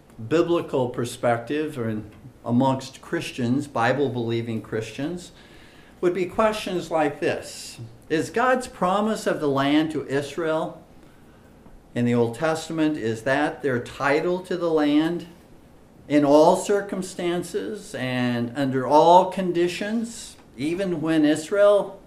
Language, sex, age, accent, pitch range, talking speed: English, male, 50-69, American, 125-180 Hz, 115 wpm